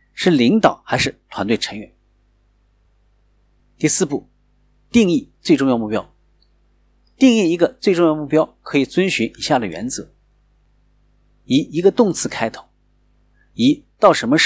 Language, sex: Chinese, male